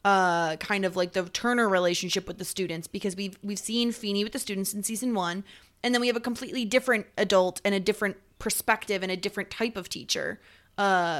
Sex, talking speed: female, 215 wpm